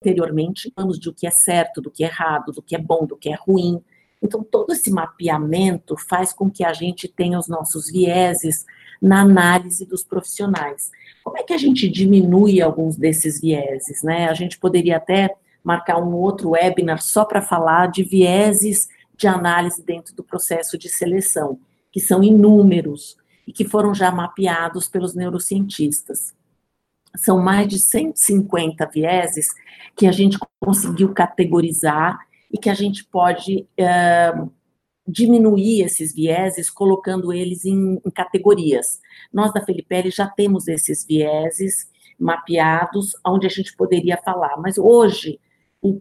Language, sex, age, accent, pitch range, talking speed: Portuguese, female, 50-69, Brazilian, 165-195 Hz, 150 wpm